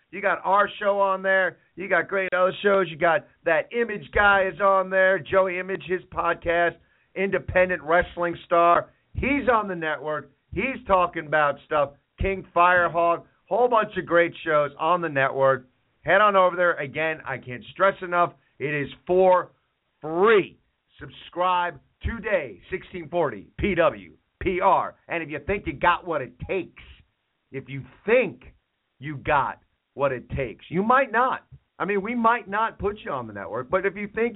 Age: 50-69